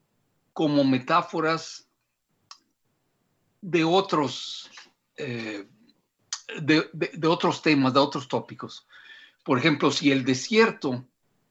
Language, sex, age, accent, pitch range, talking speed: Spanish, male, 60-79, Mexican, 130-160 Hz, 95 wpm